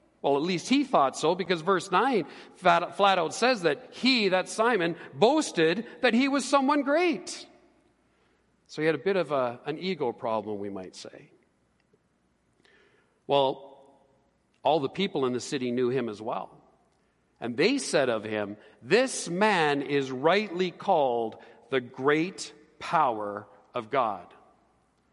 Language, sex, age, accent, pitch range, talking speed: English, male, 50-69, American, 135-190 Hz, 145 wpm